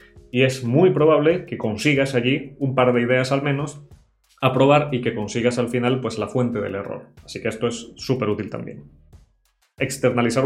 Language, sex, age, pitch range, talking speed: Spanish, male, 20-39, 110-135 Hz, 190 wpm